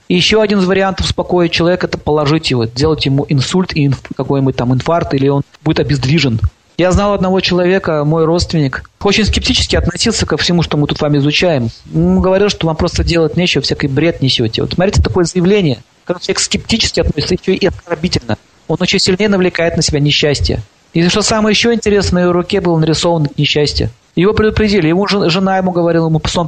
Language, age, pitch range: Russian, 40-59, 145-190 Hz